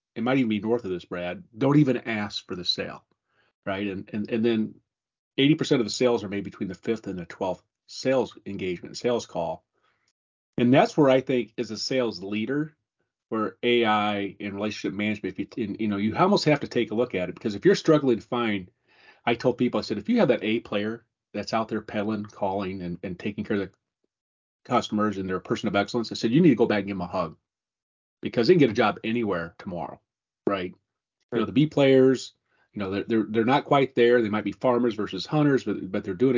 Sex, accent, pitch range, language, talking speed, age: male, American, 100-125 Hz, English, 235 wpm, 30-49